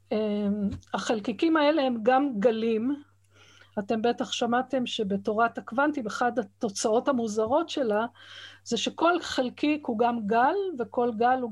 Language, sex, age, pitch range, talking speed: Hebrew, female, 50-69, 220-275 Hz, 120 wpm